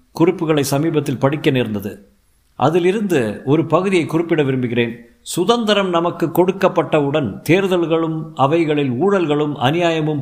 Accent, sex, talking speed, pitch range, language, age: native, male, 95 wpm, 120-165 Hz, Tamil, 50-69